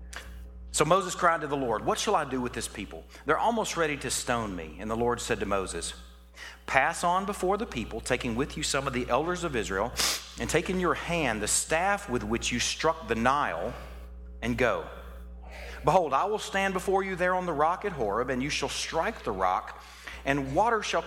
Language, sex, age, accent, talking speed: English, male, 40-59, American, 215 wpm